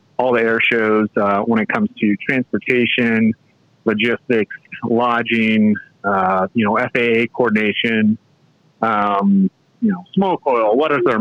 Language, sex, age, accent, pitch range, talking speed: English, male, 30-49, American, 110-135 Hz, 135 wpm